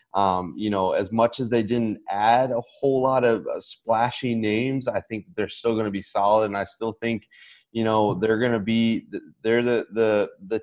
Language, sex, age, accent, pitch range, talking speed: English, male, 20-39, American, 100-115 Hz, 215 wpm